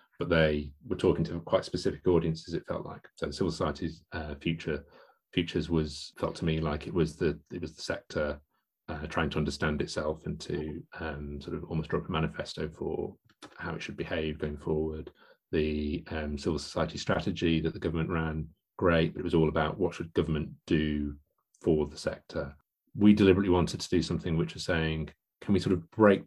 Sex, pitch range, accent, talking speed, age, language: male, 75-85 Hz, British, 200 wpm, 30-49, English